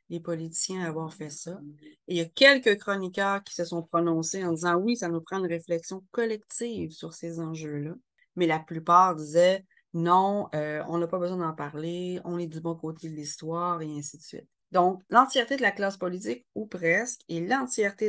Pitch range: 160-195 Hz